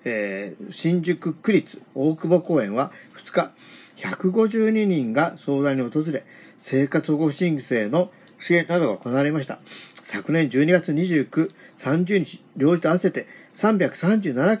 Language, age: Japanese, 50-69